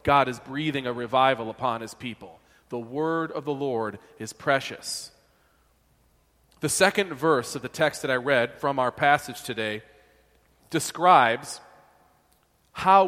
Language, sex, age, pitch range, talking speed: English, male, 40-59, 135-165 Hz, 140 wpm